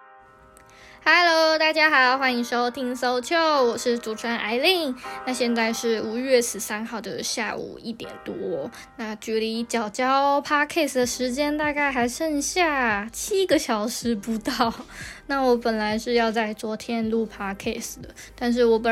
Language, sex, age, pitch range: Chinese, female, 10-29, 220-255 Hz